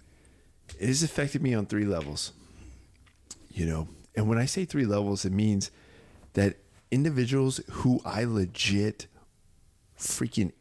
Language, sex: English, male